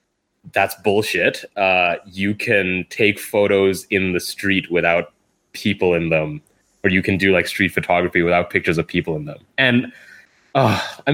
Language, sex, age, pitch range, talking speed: English, male, 20-39, 95-135 Hz, 160 wpm